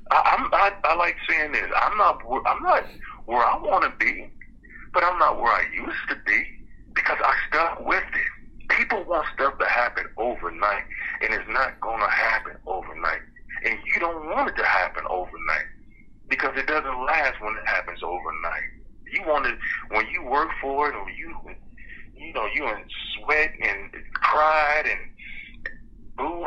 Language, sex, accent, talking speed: English, male, American, 170 wpm